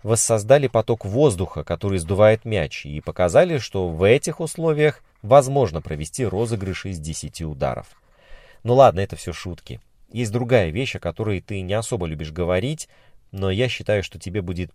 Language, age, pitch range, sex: Russian, 30-49, 85-120 Hz, male